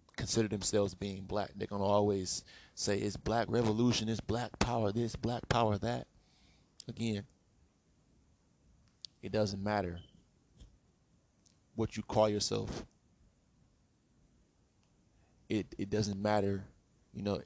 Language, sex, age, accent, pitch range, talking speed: English, male, 20-39, American, 100-110 Hz, 110 wpm